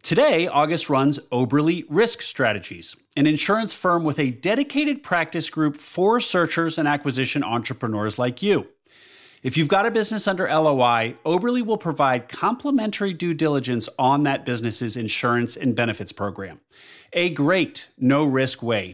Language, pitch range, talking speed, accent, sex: English, 120-165 Hz, 145 wpm, American, male